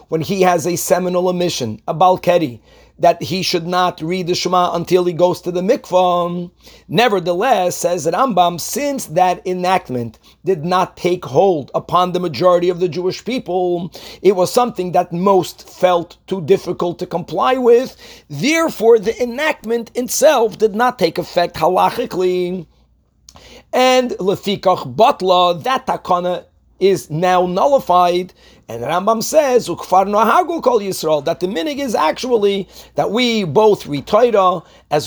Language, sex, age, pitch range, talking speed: English, male, 40-59, 175-220 Hz, 140 wpm